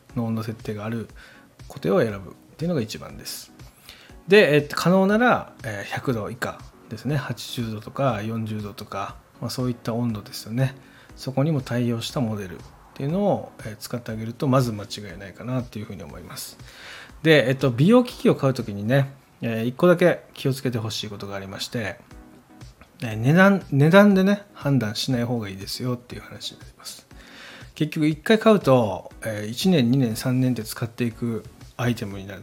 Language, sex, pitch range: Japanese, male, 110-145 Hz